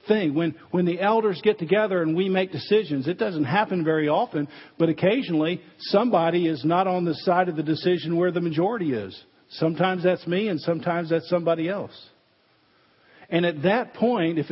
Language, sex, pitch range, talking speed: English, male, 160-190 Hz, 180 wpm